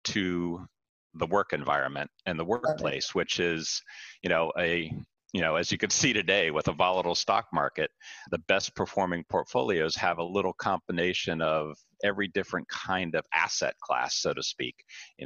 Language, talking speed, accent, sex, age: English, 170 wpm, American, male, 40-59